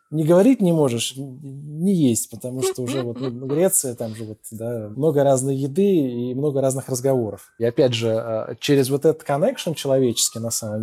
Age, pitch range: 20-39, 125-160 Hz